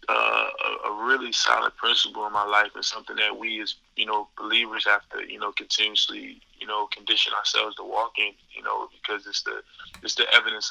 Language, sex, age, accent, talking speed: English, male, 20-39, American, 205 wpm